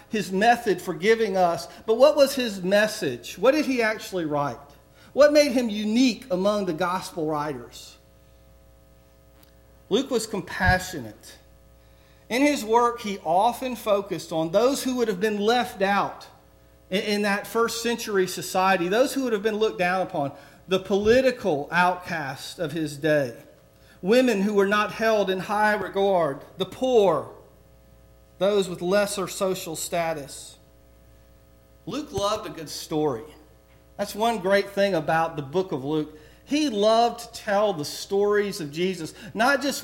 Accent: American